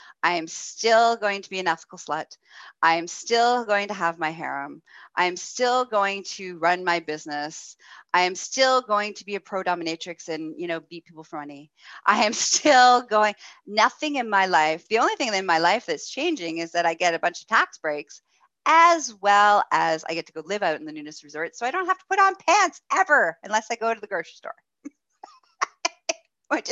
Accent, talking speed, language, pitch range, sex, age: American, 215 wpm, English, 165-260 Hz, female, 30-49